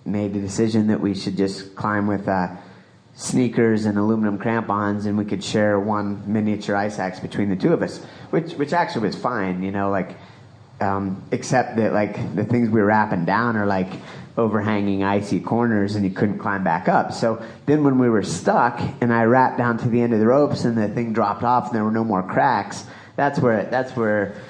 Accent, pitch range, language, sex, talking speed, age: American, 100-120 Hz, English, male, 215 wpm, 30-49